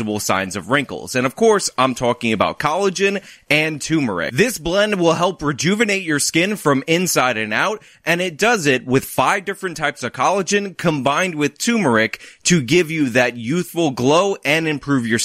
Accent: American